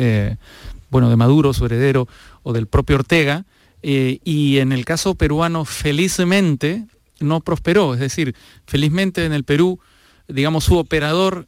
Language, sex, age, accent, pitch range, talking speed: Spanish, male, 40-59, Mexican, 125-155 Hz, 145 wpm